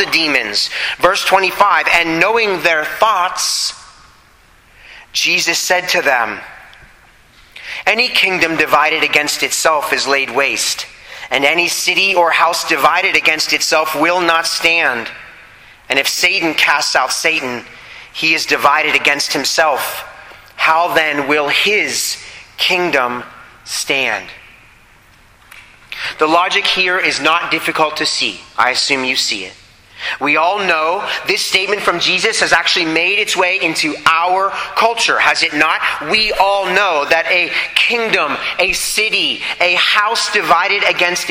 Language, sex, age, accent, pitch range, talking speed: English, male, 30-49, American, 155-195 Hz, 130 wpm